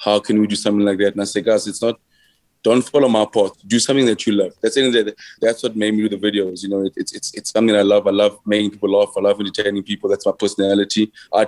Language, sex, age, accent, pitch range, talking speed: English, male, 20-39, South African, 100-110 Hz, 260 wpm